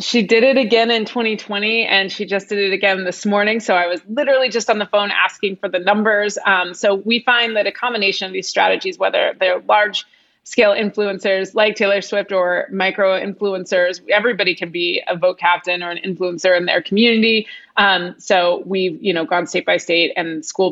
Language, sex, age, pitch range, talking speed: English, female, 30-49, 175-205 Hz, 205 wpm